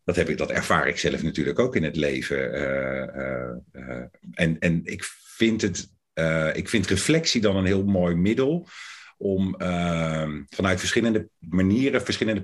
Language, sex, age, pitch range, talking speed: Dutch, male, 50-69, 80-100 Hz, 150 wpm